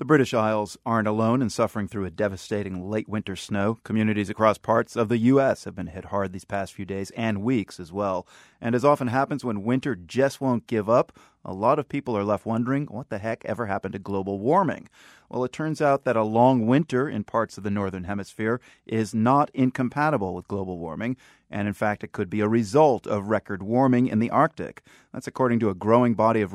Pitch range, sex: 100-125 Hz, male